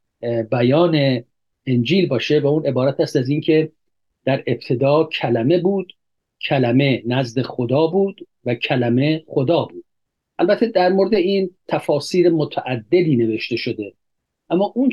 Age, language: 50-69, Persian